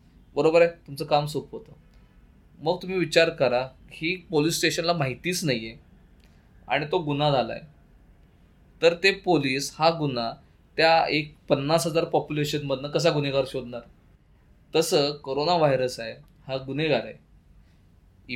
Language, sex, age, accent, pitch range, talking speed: Marathi, male, 20-39, native, 125-170 Hz, 110 wpm